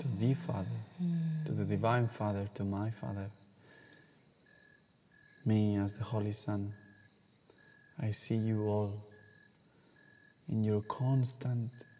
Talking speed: 110 wpm